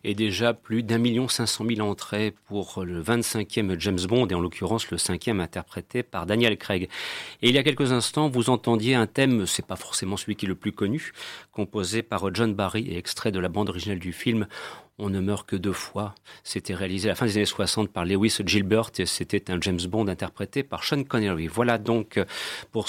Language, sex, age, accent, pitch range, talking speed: French, male, 40-59, French, 100-120 Hz, 220 wpm